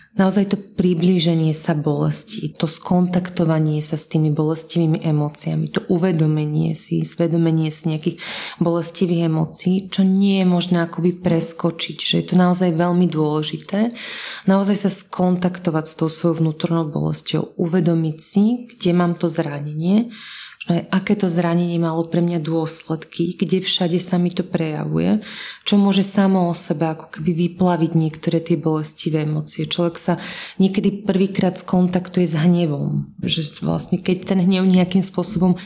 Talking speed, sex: 145 wpm, female